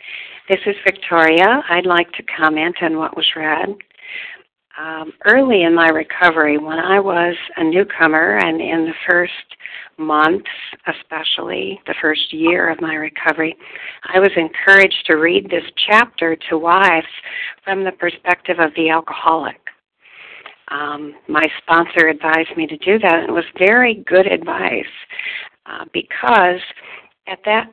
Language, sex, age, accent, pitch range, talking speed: English, female, 60-79, American, 160-195 Hz, 140 wpm